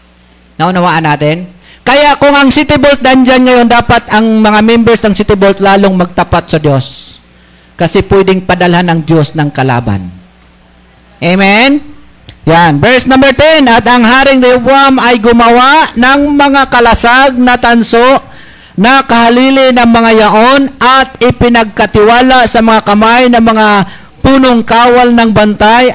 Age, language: 50-69, Filipino